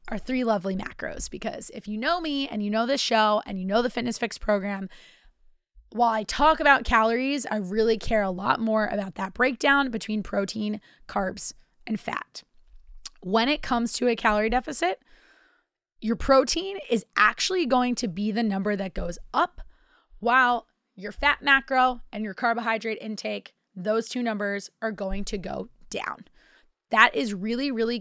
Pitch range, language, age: 205-240 Hz, English, 20-39